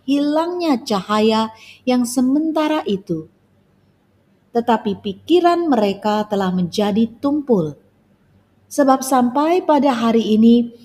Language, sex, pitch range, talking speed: Indonesian, female, 190-280 Hz, 90 wpm